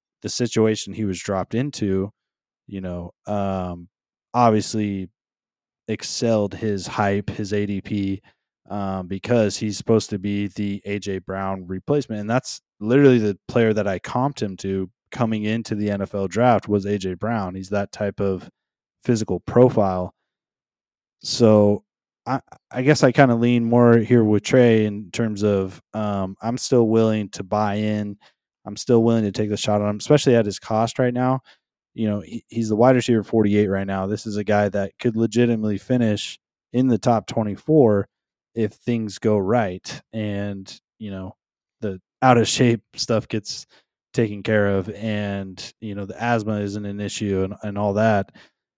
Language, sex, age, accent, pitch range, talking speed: English, male, 20-39, American, 100-115 Hz, 165 wpm